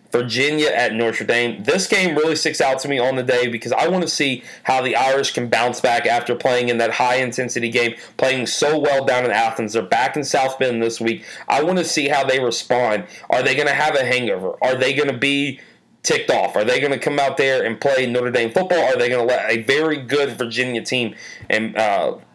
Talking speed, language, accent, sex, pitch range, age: 240 wpm, English, American, male, 115-135 Hz, 30-49